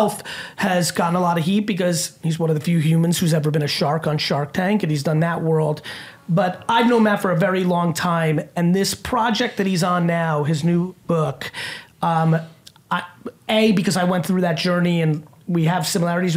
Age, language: 30-49, English